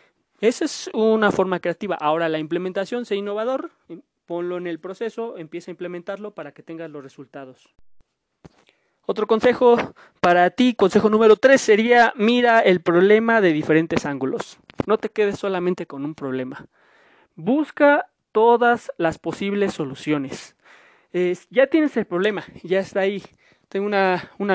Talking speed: 145 wpm